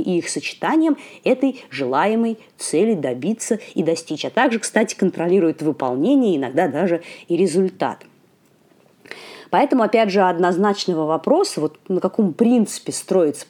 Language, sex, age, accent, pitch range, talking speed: Russian, female, 30-49, native, 170-255 Hz, 120 wpm